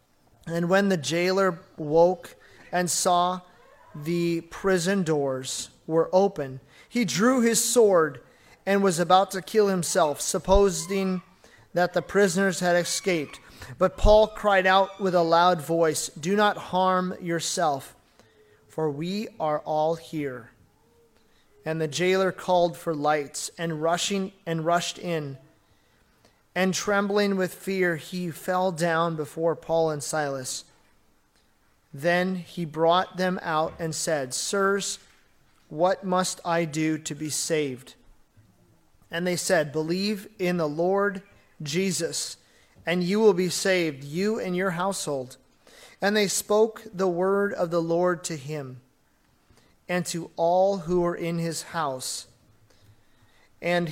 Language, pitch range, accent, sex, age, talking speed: English, 155-190 Hz, American, male, 30-49, 130 wpm